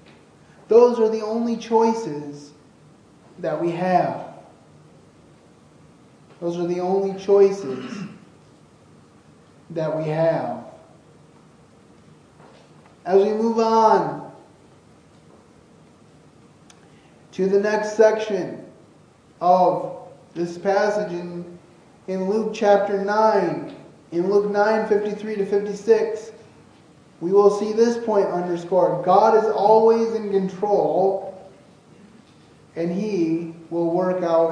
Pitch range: 180-220 Hz